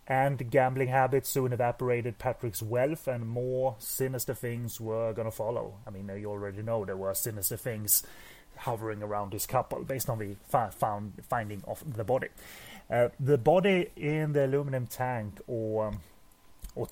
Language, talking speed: English, 165 wpm